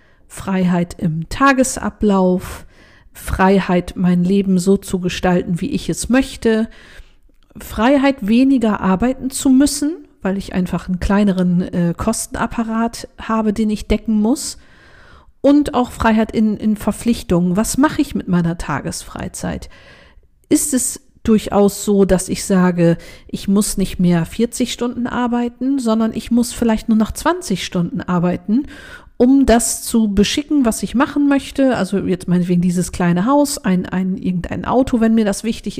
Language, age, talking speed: German, 50-69, 145 wpm